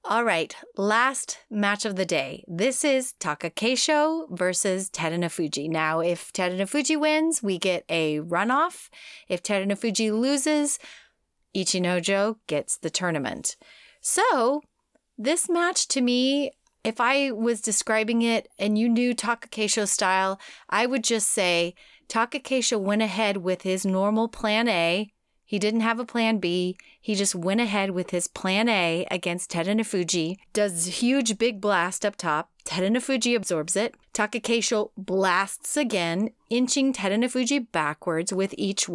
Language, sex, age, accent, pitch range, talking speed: English, female, 30-49, American, 185-240 Hz, 135 wpm